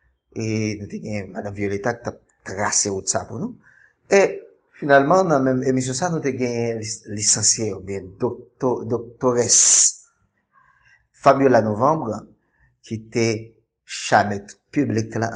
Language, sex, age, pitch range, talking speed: Spanish, male, 50-69, 105-130 Hz, 100 wpm